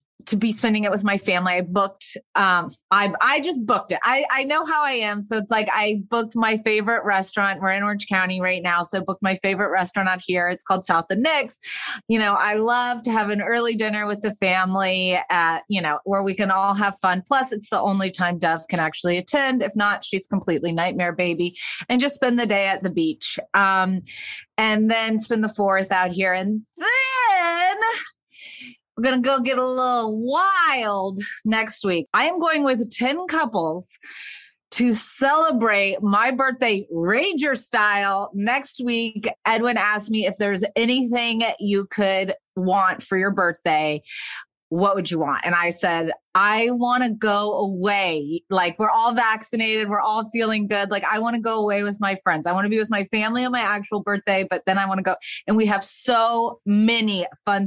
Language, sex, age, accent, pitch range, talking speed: English, female, 30-49, American, 185-230 Hz, 195 wpm